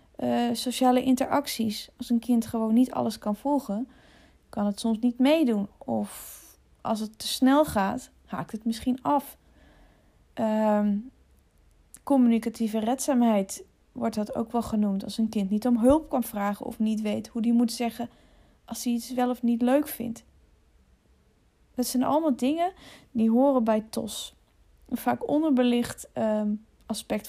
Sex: female